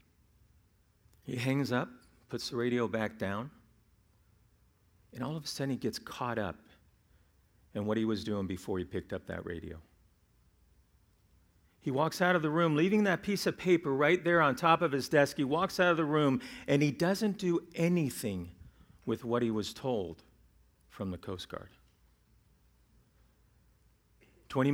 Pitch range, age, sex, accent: 95-155 Hz, 50-69, male, American